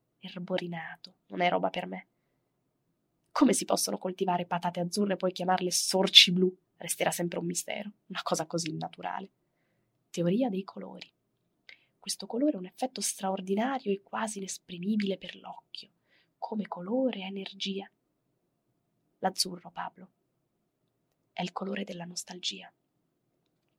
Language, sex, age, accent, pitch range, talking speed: Italian, female, 20-39, native, 180-205 Hz, 125 wpm